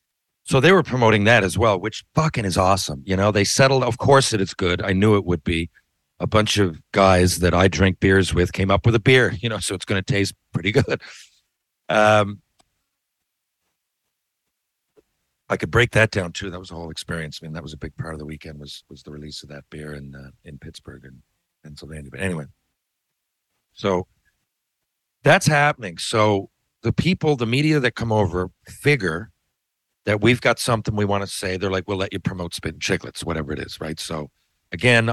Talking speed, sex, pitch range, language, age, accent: 205 wpm, male, 90-115 Hz, English, 50-69, American